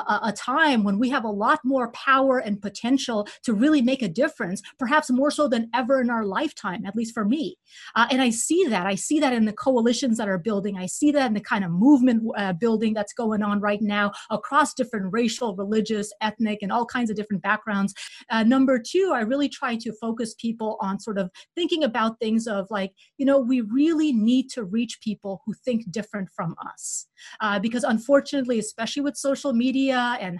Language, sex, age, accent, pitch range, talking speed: English, female, 30-49, American, 210-260 Hz, 210 wpm